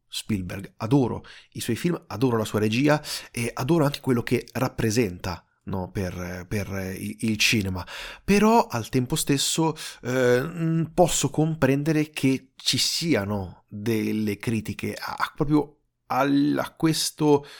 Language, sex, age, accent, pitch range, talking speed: Italian, male, 30-49, native, 105-135 Hz, 125 wpm